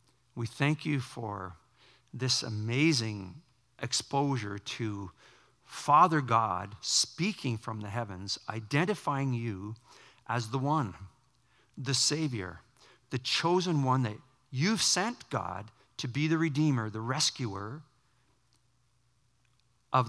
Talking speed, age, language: 105 wpm, 50-69, English